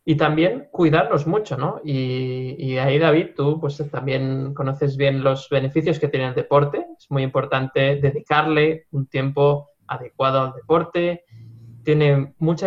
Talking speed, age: 145 wpm, 20-39